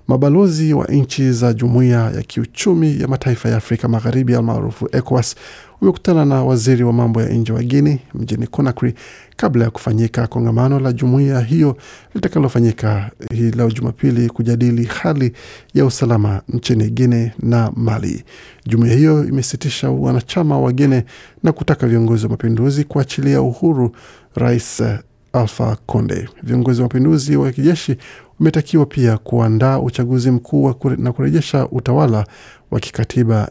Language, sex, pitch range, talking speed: Swahili, male, 115-135 Hz, 135 wpm